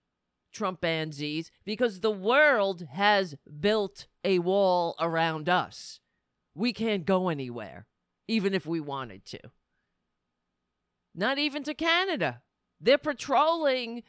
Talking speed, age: 110 wpm, 40-59